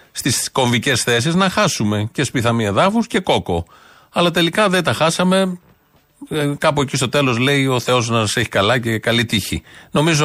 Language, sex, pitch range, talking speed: Greek, male, 120-160 Hz, 175 wpm